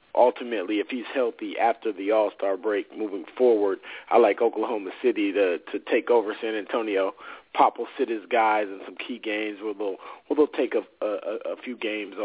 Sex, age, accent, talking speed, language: male, 40-59, American, 190 wpm, English